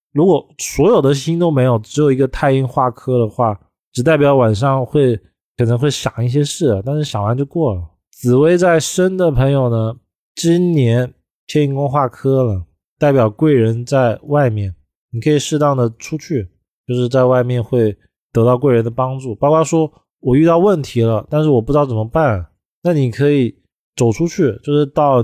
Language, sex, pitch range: Chinese, male, 115-145 Hz